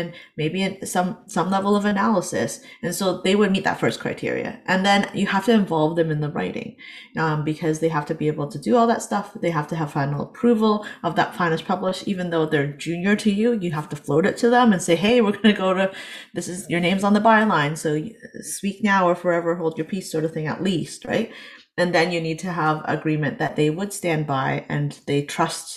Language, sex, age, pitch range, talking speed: English, female, 30-49, 155-195 Hz, 240 wpm